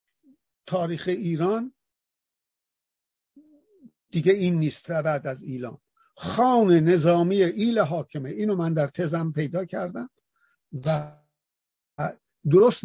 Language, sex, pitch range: Persian, male, 170-215 Hz